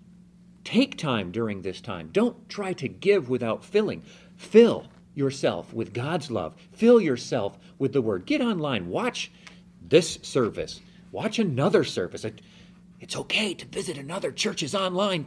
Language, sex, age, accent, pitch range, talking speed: English, male, 40-59, American, 140-200 Hz, 140 wpm